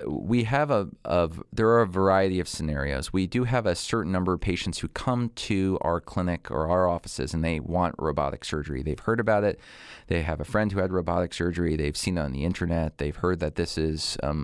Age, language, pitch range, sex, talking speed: 40-59, English, 80-100 Hz, male, 230 wpm